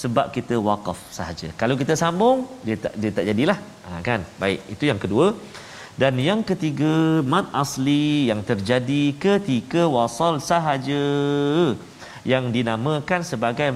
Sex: male